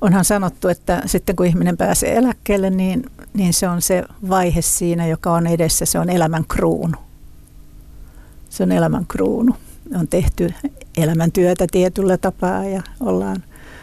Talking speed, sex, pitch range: 145 wpm, female, 175-235 Hz